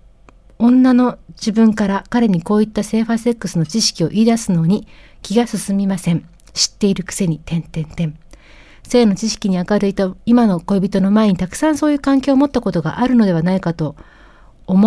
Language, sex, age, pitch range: Japanese, female, 40-59, 180-240 Hz